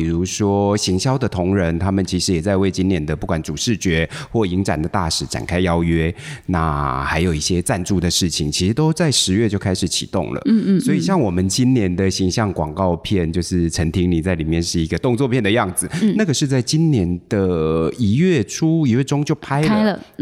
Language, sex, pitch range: Chinese, male, 90-125 Hz